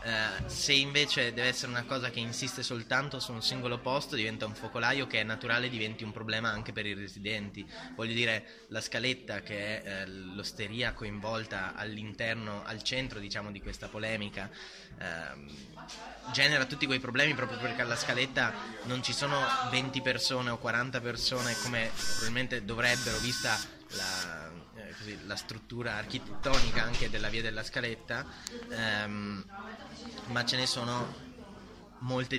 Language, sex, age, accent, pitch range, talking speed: Italian, male, 20-39, native, 110-130 Hz, 140 wpm